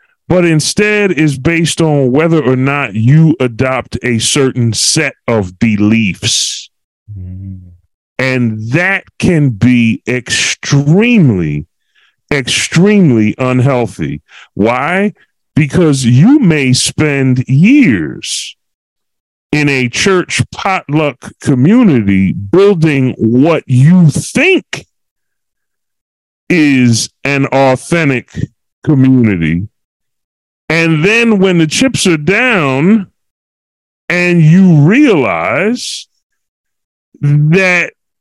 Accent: American